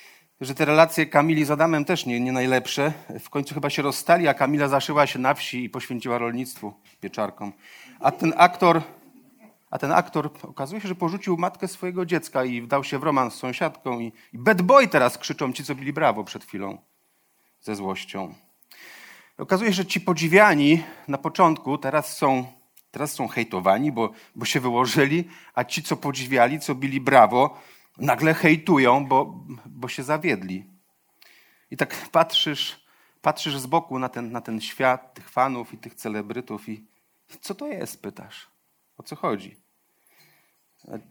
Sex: male